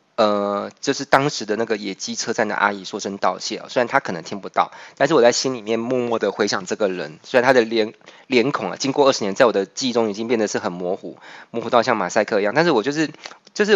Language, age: Chinese, 20-39